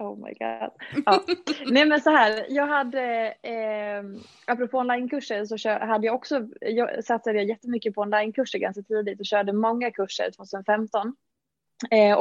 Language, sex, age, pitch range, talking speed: Swedish, female, 20-39, 200-235 Hz, 145 wpm